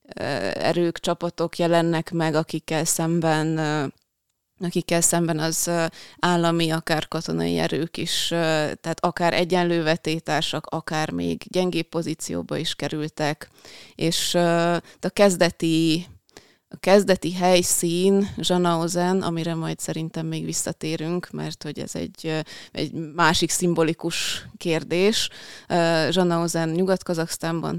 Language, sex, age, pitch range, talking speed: Hungarian, female, 20-39, 150-170 Hz, 95 wpm